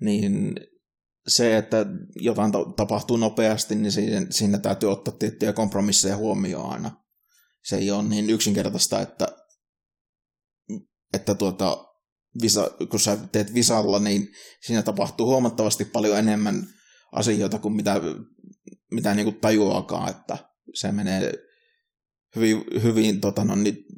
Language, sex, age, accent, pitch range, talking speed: Finnish, male, 20-39, native, 100-125 Hz, 105 wpm